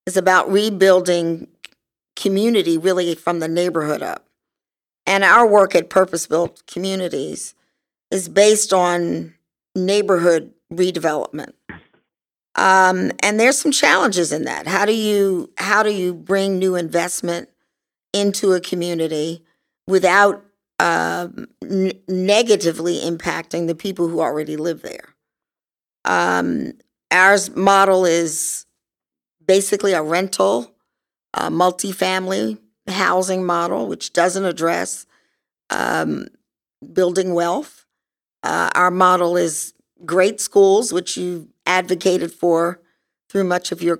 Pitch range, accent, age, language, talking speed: 170-195 Hz, American, 50-69, English, 115 wpm